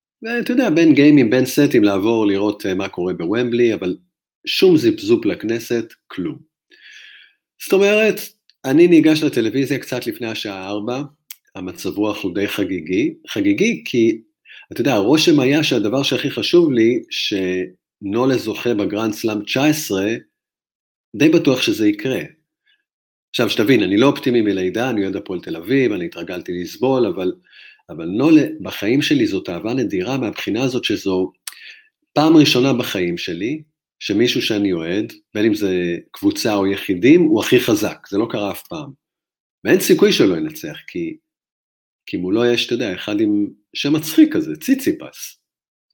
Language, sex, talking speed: Hebrew, male, 140 wpm